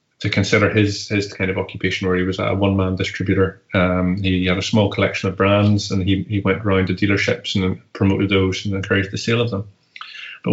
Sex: male